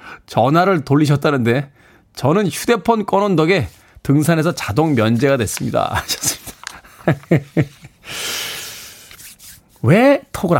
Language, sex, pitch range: Korean, male, 135-205 Hz